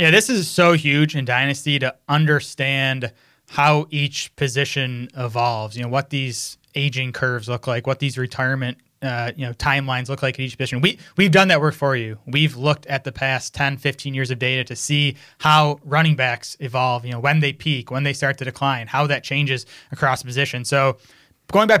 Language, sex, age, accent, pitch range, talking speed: English, male, 20-39, American, 130-155 Hz, 200 wpm